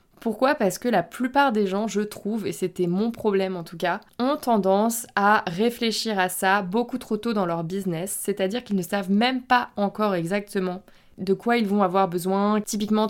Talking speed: 195 wpm